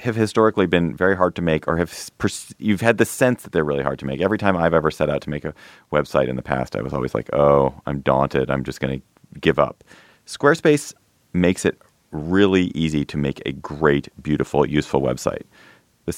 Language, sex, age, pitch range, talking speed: English, male, 30-49, 70-95 Hz, 220 wpm